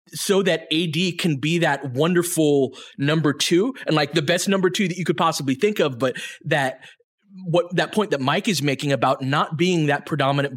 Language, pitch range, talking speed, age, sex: English, 140-180 Hz, 200 wpm, 20-39, male